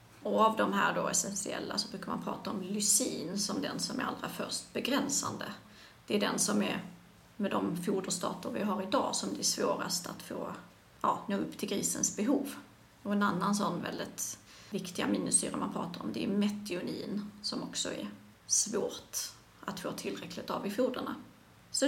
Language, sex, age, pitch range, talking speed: Swedish, female, 30-49, 195-235 Hz, 180 wpm